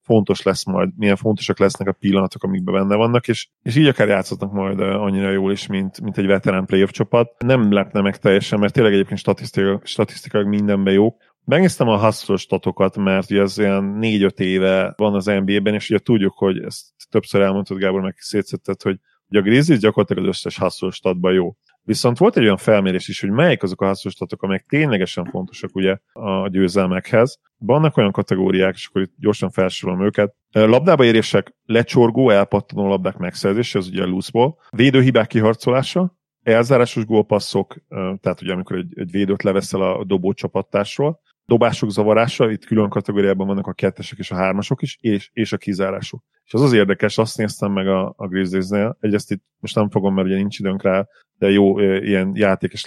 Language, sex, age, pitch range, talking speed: Hungarian, male, 30-49, 95-110 Hz, 185 wpm